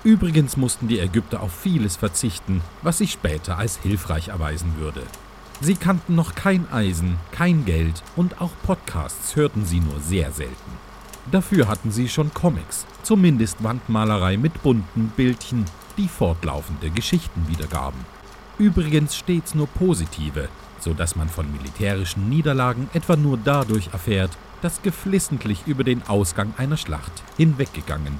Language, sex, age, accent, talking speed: German, male, 40-59, German, 140 wpm